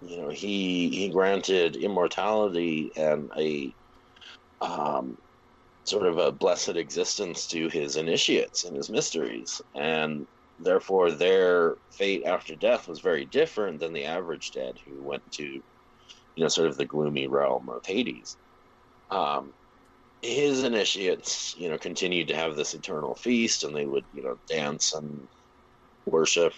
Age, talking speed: 30-49, 145 wpm